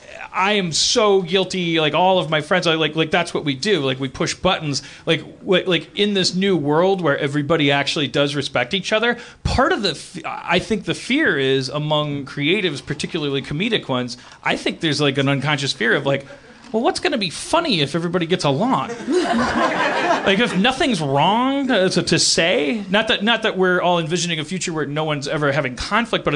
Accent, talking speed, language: American, 200 wpm, English